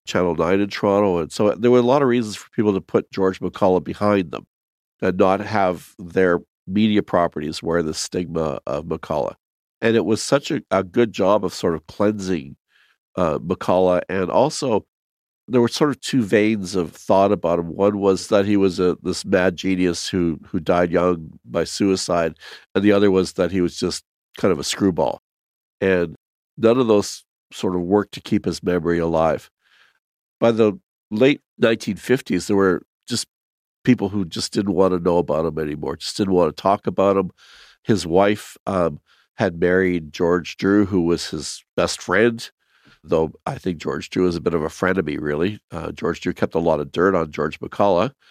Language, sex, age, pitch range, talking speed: English, male, 50-69, 90-105 Hz, 195 wpm